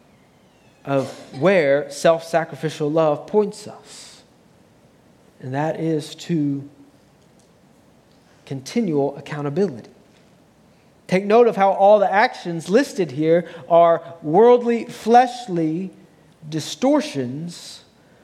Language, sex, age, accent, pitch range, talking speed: English, male, 40-59, American, 140-190 Hz, 80 wpm